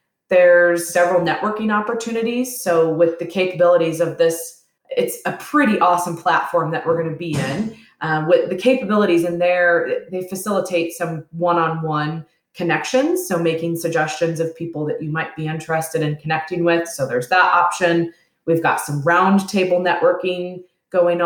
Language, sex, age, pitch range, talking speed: English, female, 20-39, 165-200 Hz, 155 wpm